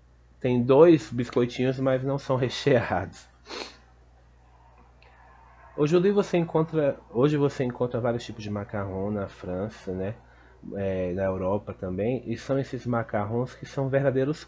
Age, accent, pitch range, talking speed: 30-49, Brazilian, 90-130 Hz, 130 wpm